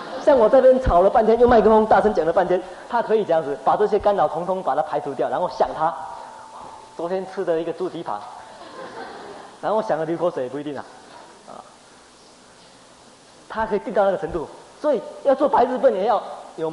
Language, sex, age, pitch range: Chinese, male, 20-39, 170-270 Hz